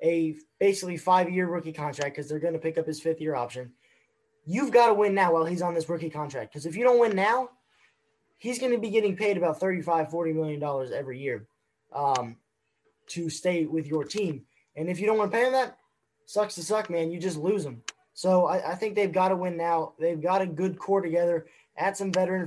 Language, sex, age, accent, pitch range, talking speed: English, male, 10-29, American, 160-200 Hz, 225 wpm